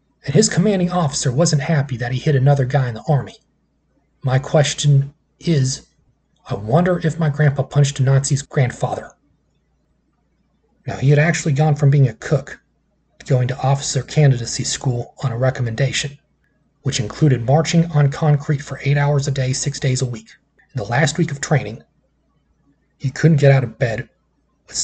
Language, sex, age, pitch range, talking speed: English, male, 30-49, 130-150 Hz, 170 wpm